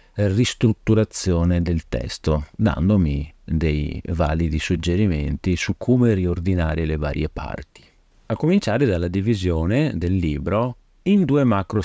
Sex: male